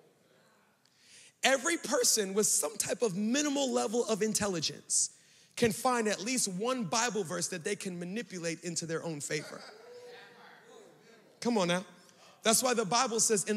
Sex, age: male, 30-49